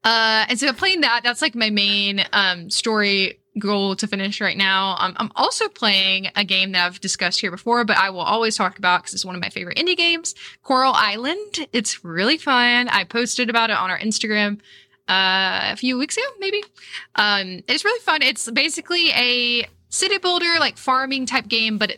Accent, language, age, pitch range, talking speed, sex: American, English, 20-39, 185-245 Hz, 200 wpm, female